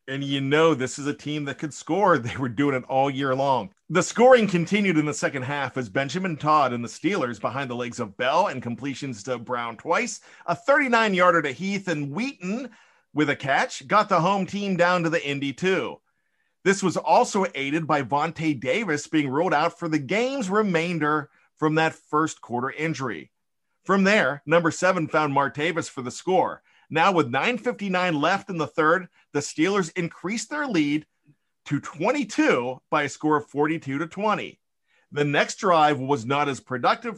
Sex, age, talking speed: male, 40-59, 185 wpm